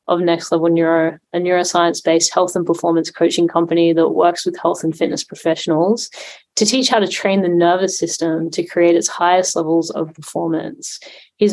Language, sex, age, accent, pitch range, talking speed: English, female, 20-39, Australian, 165-190 Hz, 175 wpm